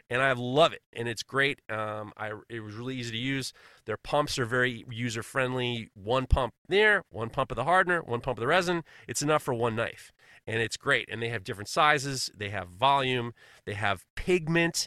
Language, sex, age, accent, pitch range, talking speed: English, male, 30-49, American, 115-135 Hz, 210 wpm